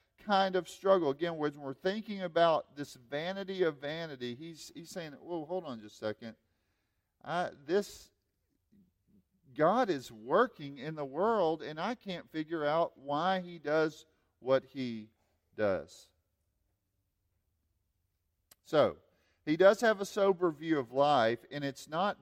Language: English